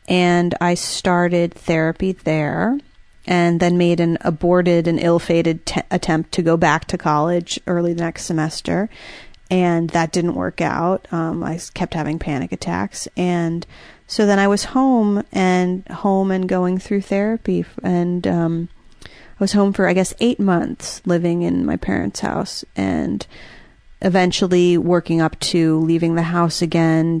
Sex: female